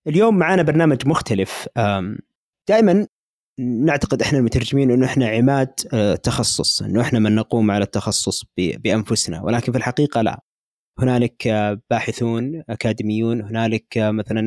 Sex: male